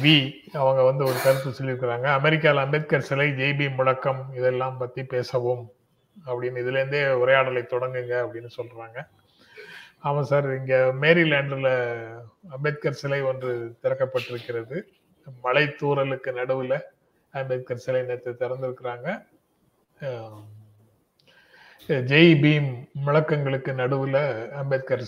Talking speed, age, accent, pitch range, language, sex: 95 wpm, 30-49, native, 125-140 Hz, Tamil, male